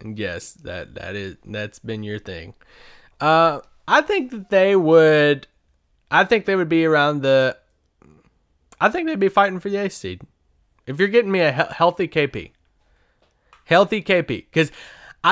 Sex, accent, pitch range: male, American, 135-180 Hz